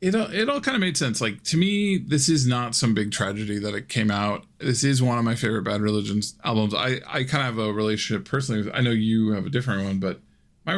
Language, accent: English, American